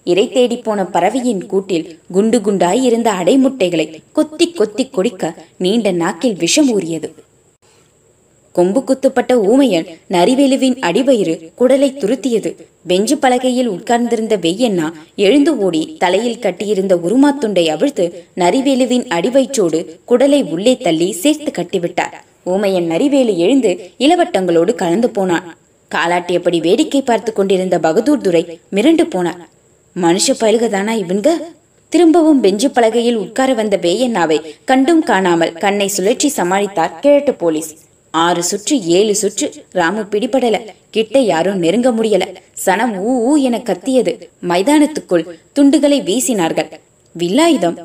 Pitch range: 175-260 Hz